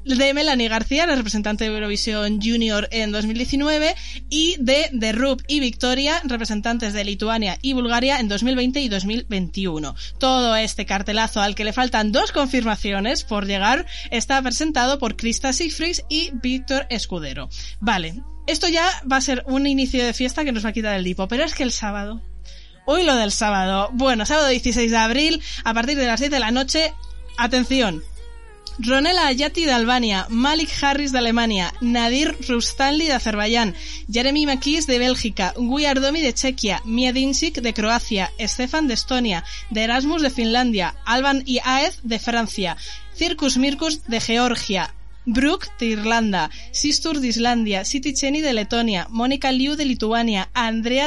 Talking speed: 160 wpm